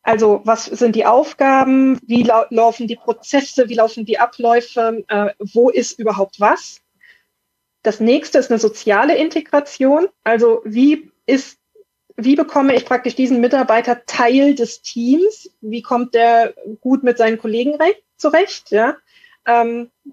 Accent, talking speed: German, 140 wpm